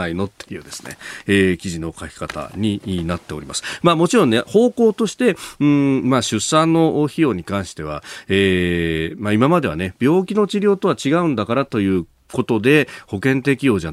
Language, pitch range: Japanese, 95-140 Hz